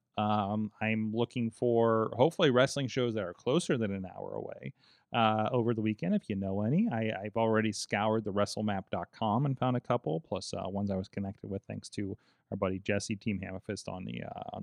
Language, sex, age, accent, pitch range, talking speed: English, male, 30-49, American, 110-135 Hz, 205 wpm